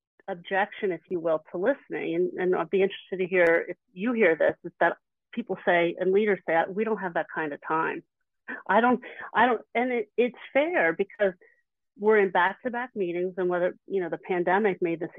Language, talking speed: English, 200 wpm